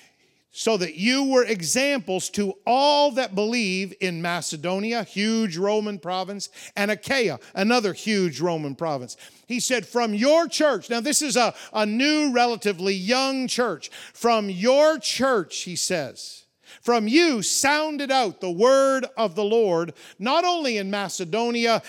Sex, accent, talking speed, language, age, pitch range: male, American, 145 wpm, English, 50-69, 195-260 Hz